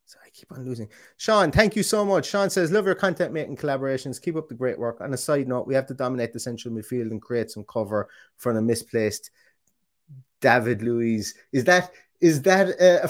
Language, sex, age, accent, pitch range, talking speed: English, male, 30-49, British, 115-155 Hz, 210 wpm